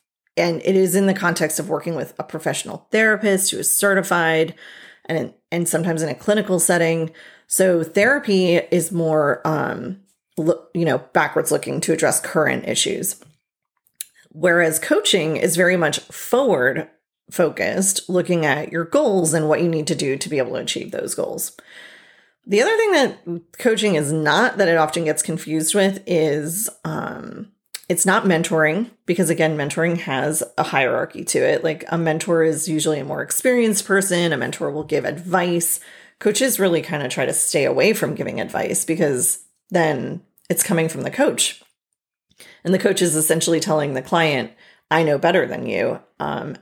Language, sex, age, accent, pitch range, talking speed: English, female, 30-49, American, 155-195 Hz, 170 wpm